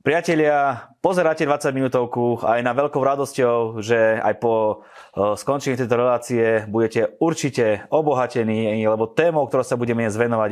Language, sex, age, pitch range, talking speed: Slovak, male, 20-39, 110-130 Hz, 130 wpm